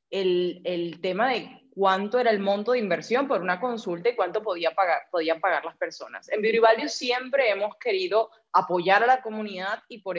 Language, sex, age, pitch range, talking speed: Spanish, female, 20-39, 180-230 Hz, 190 wpm